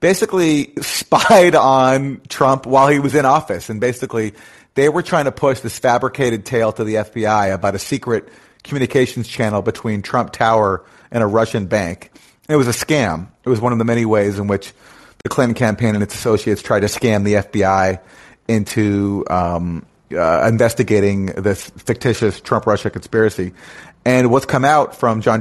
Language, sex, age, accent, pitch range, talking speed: English, male, 40-59, American, 105-125 Hz, 170 wpm